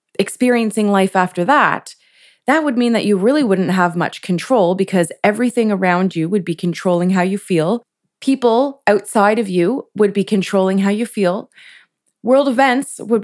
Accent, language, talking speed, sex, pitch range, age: American, English, 170 wpm, female, 185-240 Hz, 20-39